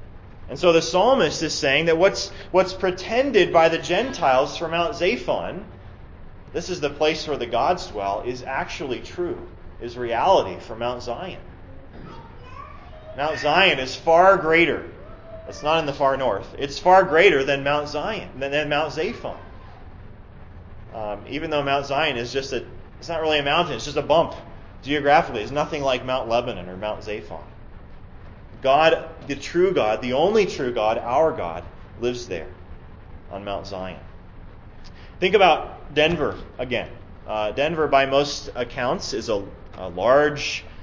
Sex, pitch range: male, 105-160 Hz